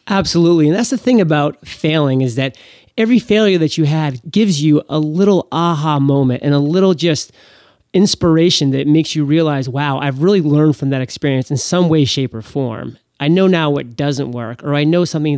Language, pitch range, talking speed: English, 130-170 Hz, 205 wpm